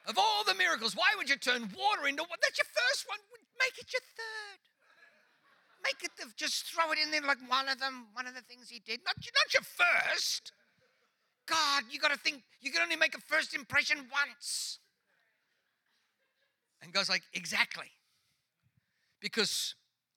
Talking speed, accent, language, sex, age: 175 wpm, British, English, male, 50-69